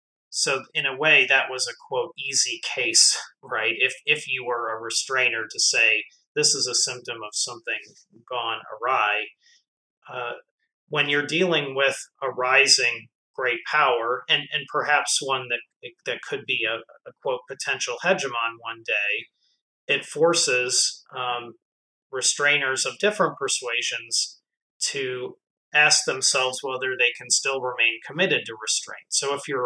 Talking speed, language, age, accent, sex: 150 wpm, English, 30-49, American, male